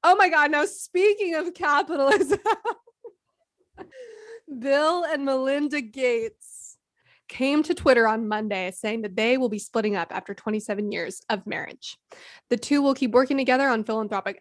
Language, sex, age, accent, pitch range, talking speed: English, female, 20-39, American, 215-275 Hz, 150 wpm